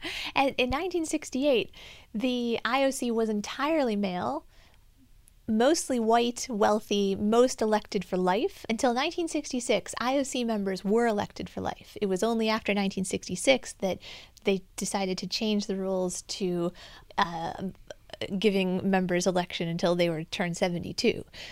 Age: 30-49